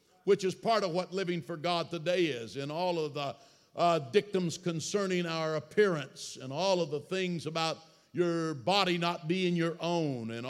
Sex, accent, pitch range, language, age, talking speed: male, American, 165-195 Hz, English, 60-79, 185 wpm